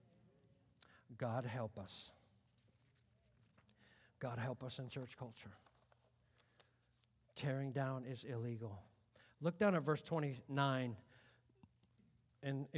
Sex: male